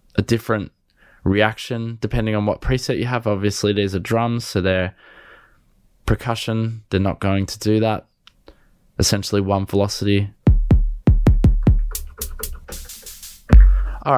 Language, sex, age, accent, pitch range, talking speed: English, male, 20-39, Australian, 100-130 Hz, 110 wpm